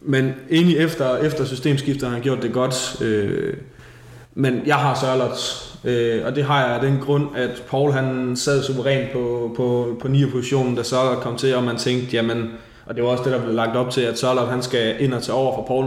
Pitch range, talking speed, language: 120-135 Hz, 235 wpm, Danish